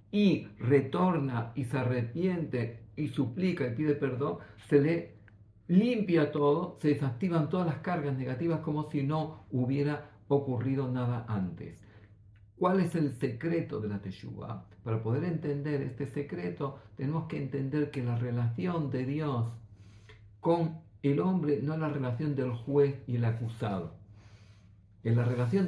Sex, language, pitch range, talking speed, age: male, Greek, 115-160 Hz, 145 wpm, 50-69